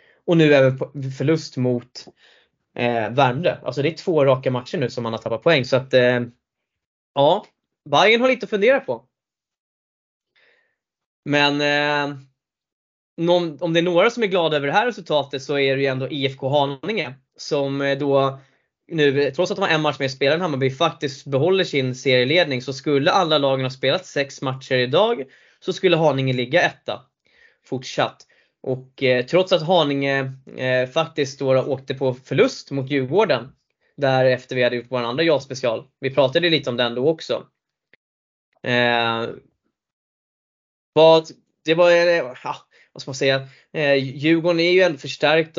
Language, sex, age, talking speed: Swedish, male, 20-39, 165 wpm